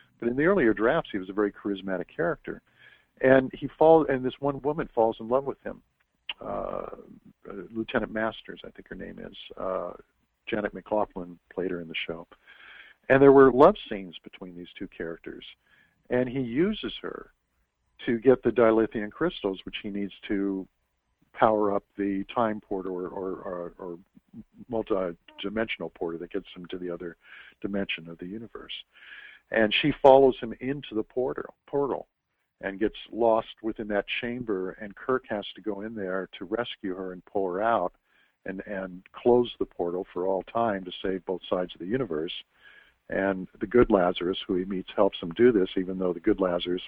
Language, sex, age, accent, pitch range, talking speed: English, male, 50-69, American, 95-120 Hz, 180 wpm